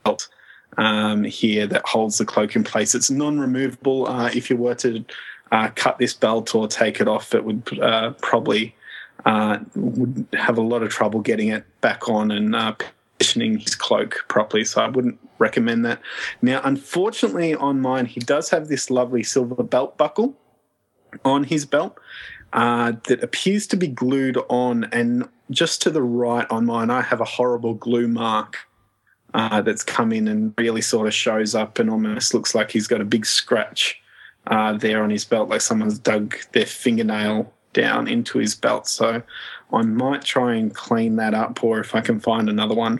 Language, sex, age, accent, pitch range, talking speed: English, male, 20-39, Australian, 110-135 Hz, 185 wpm